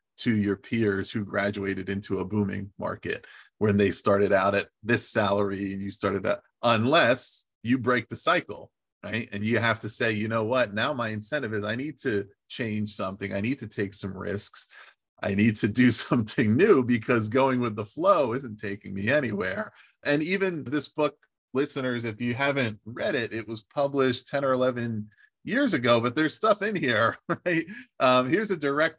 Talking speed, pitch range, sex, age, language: 190 wpm, 105-130 Hz, male, 30-49, English